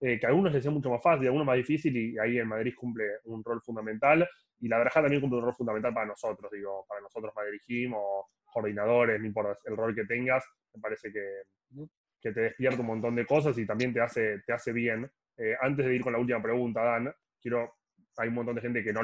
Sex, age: male, 20-39